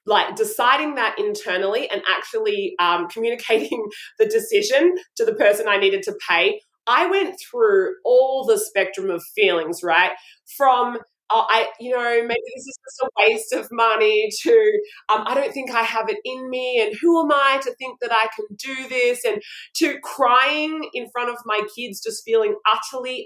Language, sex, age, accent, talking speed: English, female, 20-39, Australian, 185 wpm